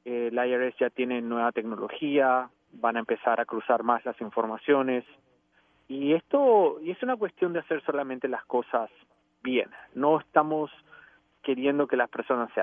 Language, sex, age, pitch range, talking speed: English, male, 30-49, 125-160 Hz, 155 wpm